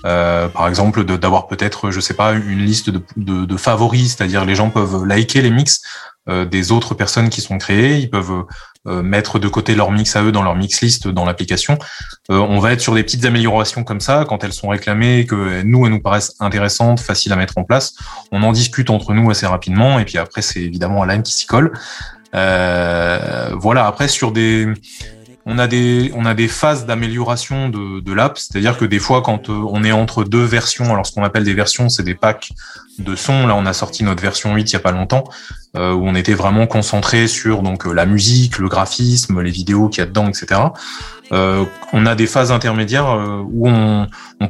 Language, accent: French, French